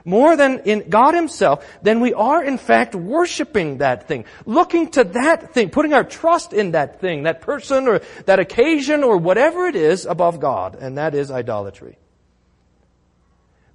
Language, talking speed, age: English, 170 wpm, 40-59